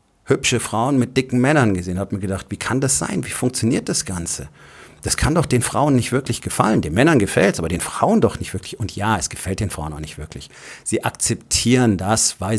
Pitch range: 95-115 Hz